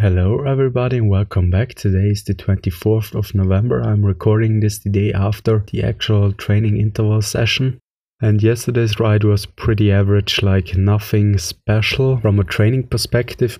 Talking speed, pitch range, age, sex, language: 155 wpm, 95-105 Hz, 20-39, male, English